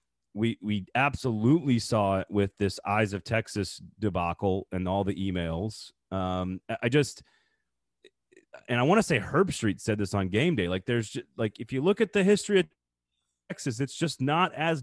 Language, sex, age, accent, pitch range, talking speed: English, male, 30-49, American, 100-140 Hz, 185 wpm